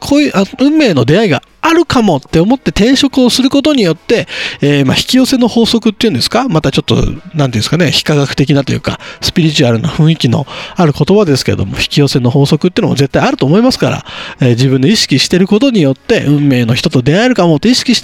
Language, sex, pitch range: Japanese, male, 135-215 Hz